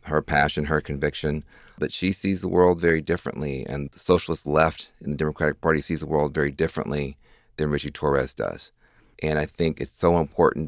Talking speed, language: 190 wpm, English